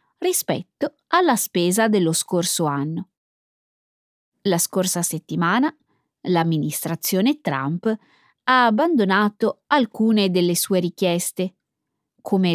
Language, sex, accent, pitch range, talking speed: Italian, female, native, 170-245 Hz, 85 wpm